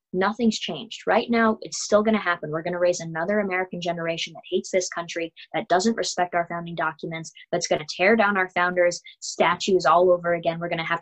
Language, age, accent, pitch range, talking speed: English, 20-39, American, 165-185 Hz, 225 wpm